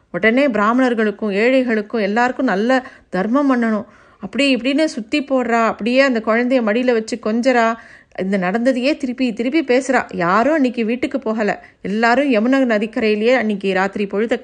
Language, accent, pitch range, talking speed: Tamil, native, 210-260 Hz, 135 wpm